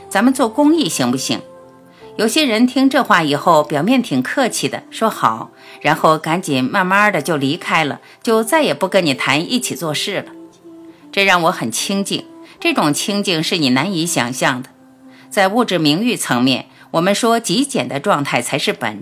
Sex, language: female, Chinese